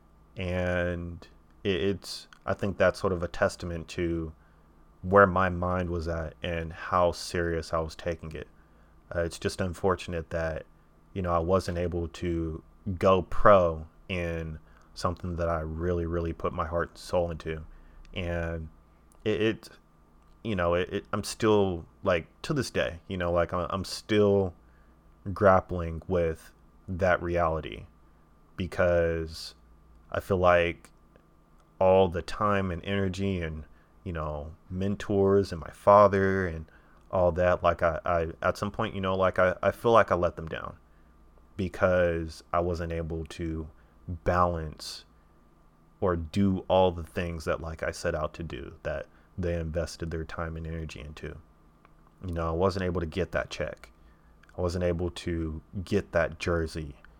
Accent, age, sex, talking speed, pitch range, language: American, 30-49, male, 155 wpm, 80-90 Hz, English